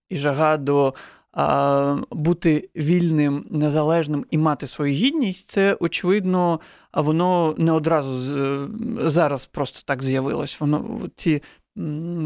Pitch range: 145-175 Hz